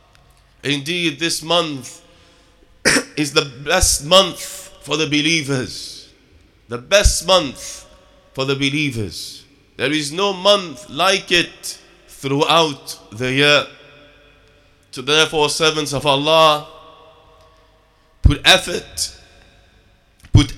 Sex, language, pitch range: male, English, 140-170 Hz